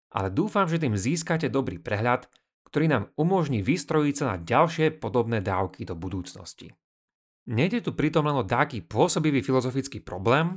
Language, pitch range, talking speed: Slovak, 100-150 Hz, 155 wpm